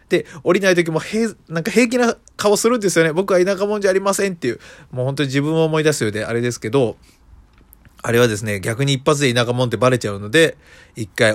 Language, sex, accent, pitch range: Japanese, male, native, 105-150 Hz